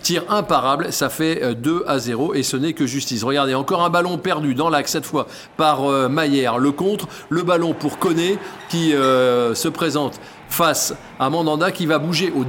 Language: French